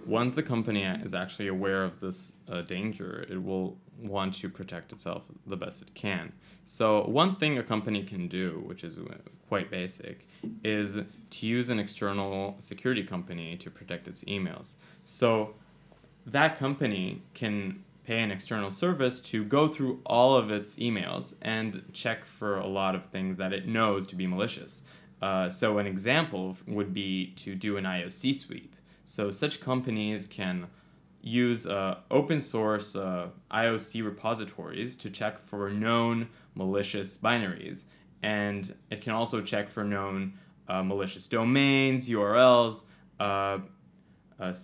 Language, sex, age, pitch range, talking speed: English, male, 20-39, 95-115 Hz, 145 wpm